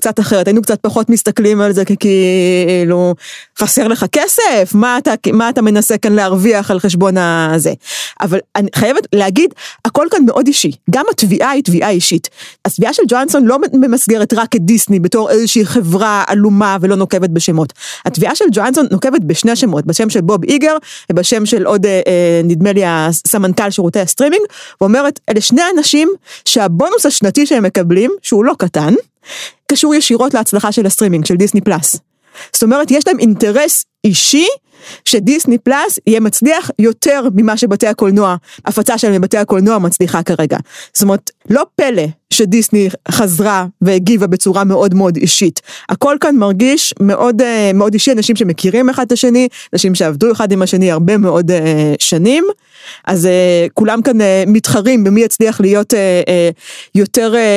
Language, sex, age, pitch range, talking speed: Hebrew, female, 30-49, 190-245 Hz, 150 wpm